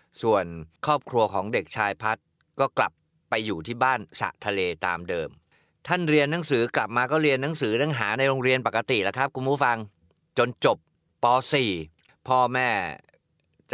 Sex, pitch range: male, 100-130 Hz